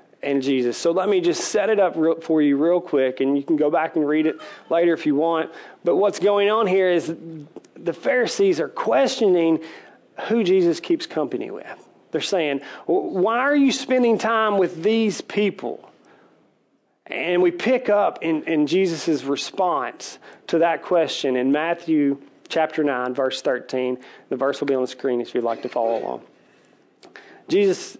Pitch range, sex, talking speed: 145-215 Hz, male, 175 wpm